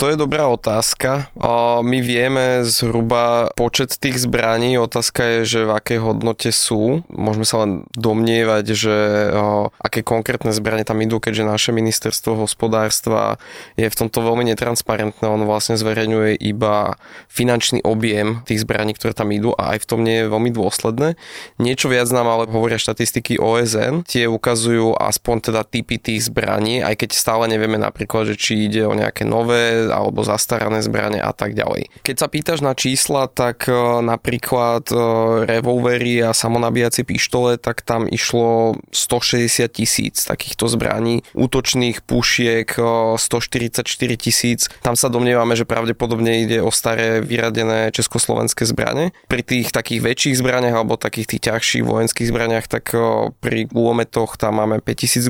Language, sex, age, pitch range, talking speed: Slovak, male, 20-39, 110-120 Hz, 150 wpm